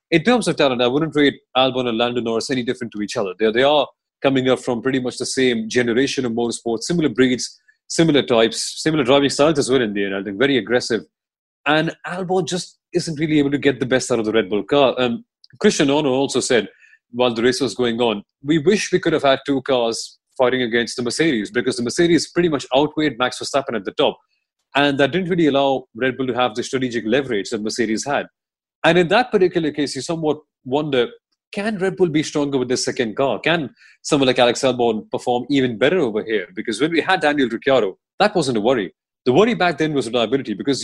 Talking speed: 225 wpm